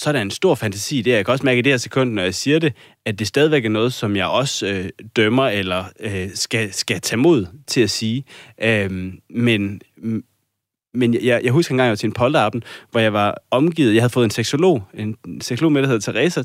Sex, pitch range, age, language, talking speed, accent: male, 105-130 Hz, 30-49, Danish, 240 wpm, native